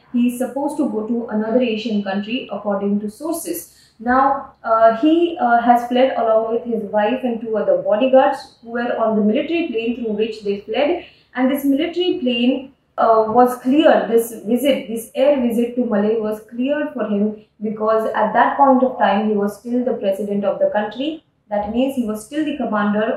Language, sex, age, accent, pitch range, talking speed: English, female, 20-39, Indian, 215-265 Hz, 195 wpm